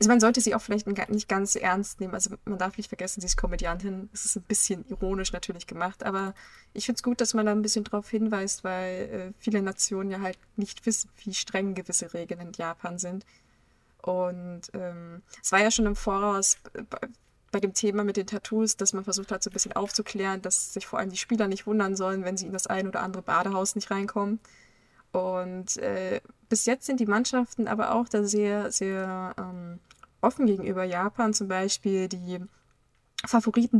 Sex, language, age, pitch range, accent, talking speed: female, German, 20-39, 190-215 Hz, German, 200 wpm